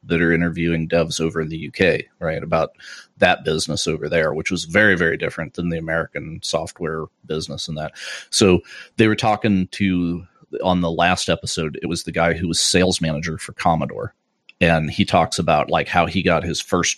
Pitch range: 80-90 Hz